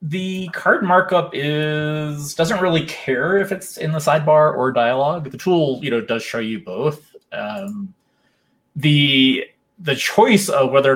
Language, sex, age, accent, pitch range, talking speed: English, male, 20-39, American, 115-155 Hz, 155 wpm